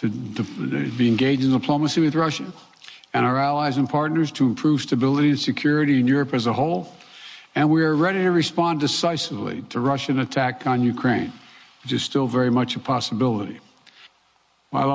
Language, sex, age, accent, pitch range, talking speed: English, male, 60-79, American, 135-160 Hz, 170 wpm